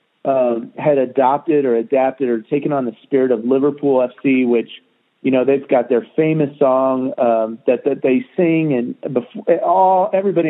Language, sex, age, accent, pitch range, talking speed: English, male, 40-59, American, 125-160 Hz, 170 wpm